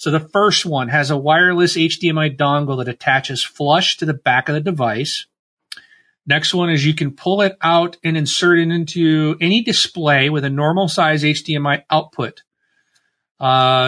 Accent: American